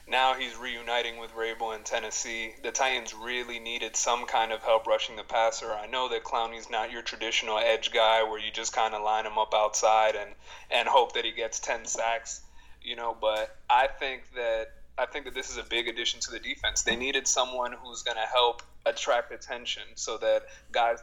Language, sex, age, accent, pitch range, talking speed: English, male, 30-49, American, 110-125 Hz, 210 wpm